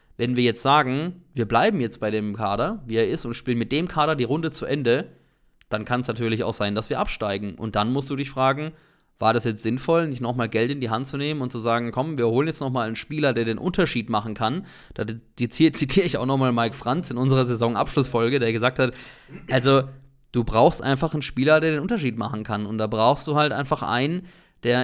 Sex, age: male, 20-39